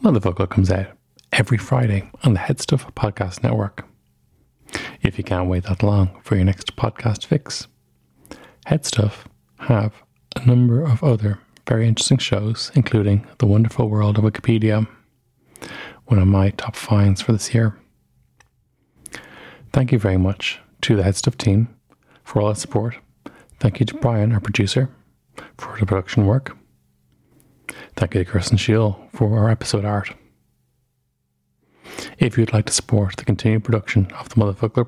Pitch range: 100-120 Hz